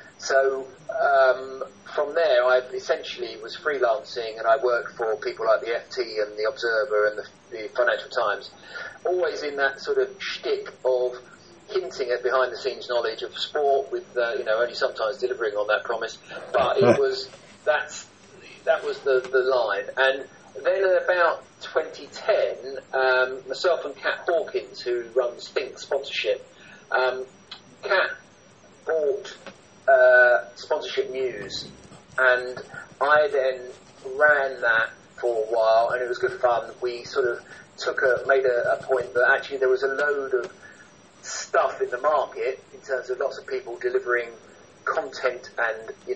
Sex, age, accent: male, 40-59, British